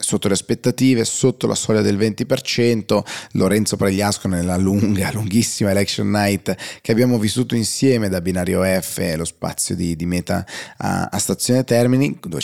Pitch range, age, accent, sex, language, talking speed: 90-110 Hz, 30-49, native, male, Italian, 155 wpm